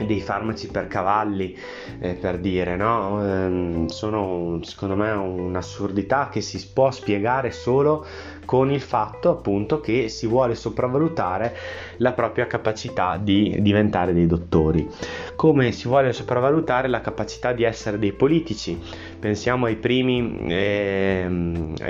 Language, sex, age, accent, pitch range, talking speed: Italian, male, 20-39, native, 95-115 Hz, 125 wpm